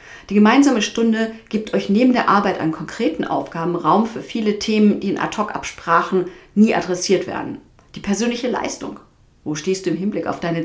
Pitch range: 170-215 Hz